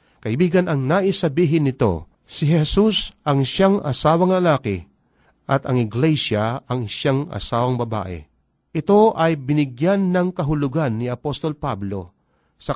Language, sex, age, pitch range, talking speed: Filipino, male, 40-59, 115-160 Hz, 120 wpm